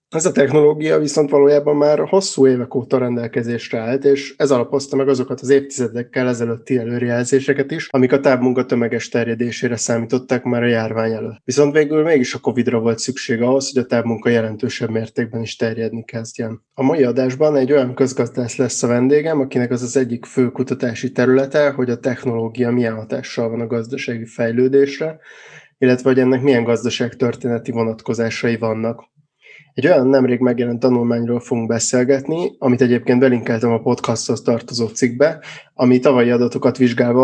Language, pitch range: Hungarian, 115-135 Hz